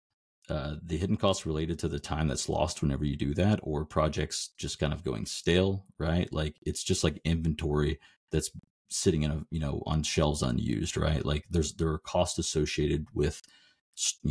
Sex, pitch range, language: male, 75-90 Hz, English